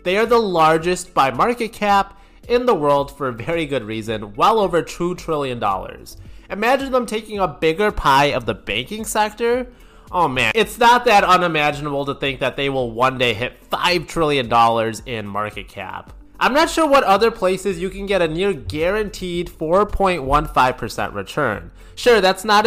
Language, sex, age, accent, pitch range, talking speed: English, male, 20-39, American, 135-205 Hz, 175 wpm